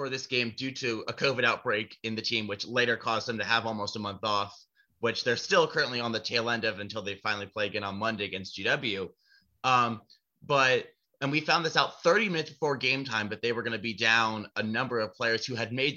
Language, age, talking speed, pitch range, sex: English, 30-49, 245 wpm, 115-150 Hz, male